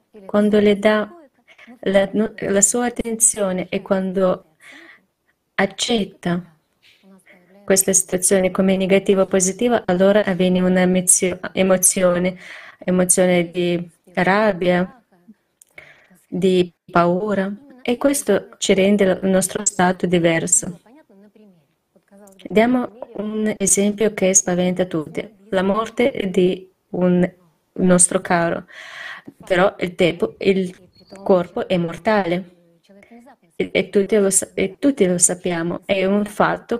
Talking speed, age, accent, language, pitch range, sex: 100 wpm, 20-39, native, Italian, 180-210 Hz, female